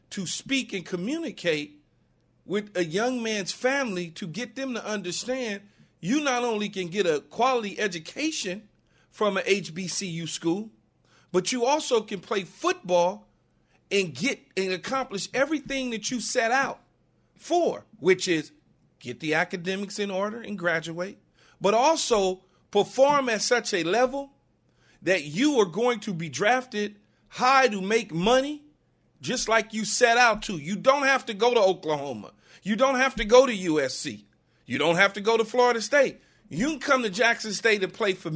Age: 40-59